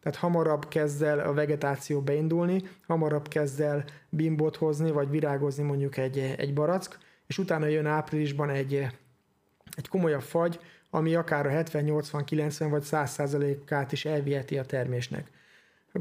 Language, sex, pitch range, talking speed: Hungarian, male, 145-160 Hz, 130 wpm